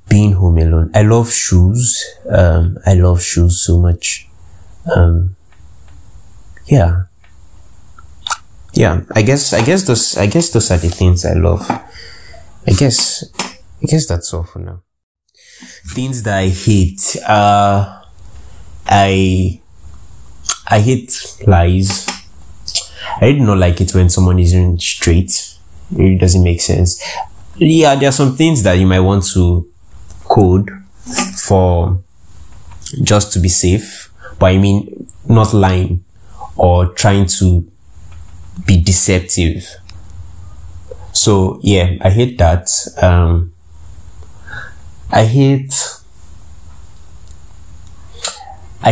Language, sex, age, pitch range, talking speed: English, male, 20-39, 85-100 Hz, 115 wpm